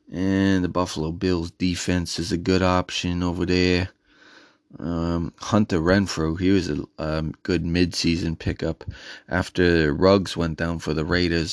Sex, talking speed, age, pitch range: male, 145 wpm, 30-49, 80-90 Hz